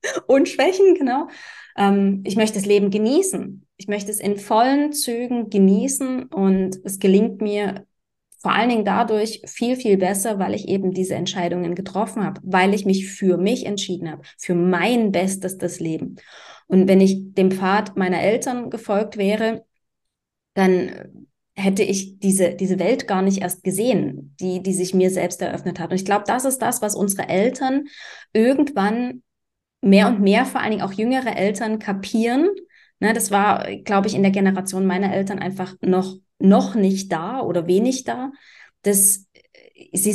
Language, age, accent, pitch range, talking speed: German, 20-39, German, 190-230 Hz, 165 wpm